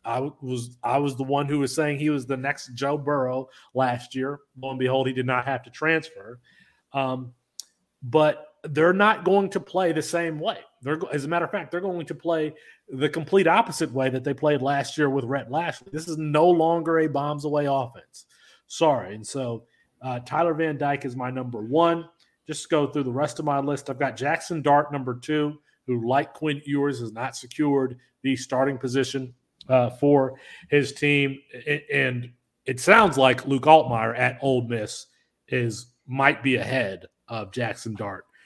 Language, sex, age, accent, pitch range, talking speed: English, male, 30-49, American, 125-150 Hz, 185 wpm